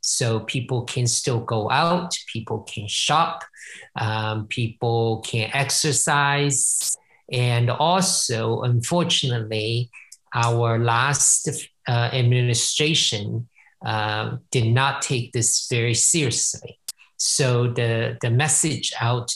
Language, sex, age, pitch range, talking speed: English, male, 50-69, 115-140 Hz, 100 wpm